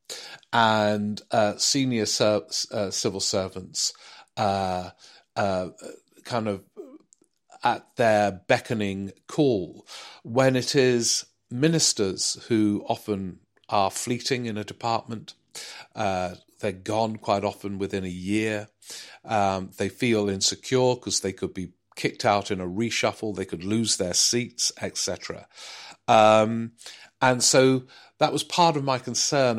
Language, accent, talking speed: English, British, 120 wpm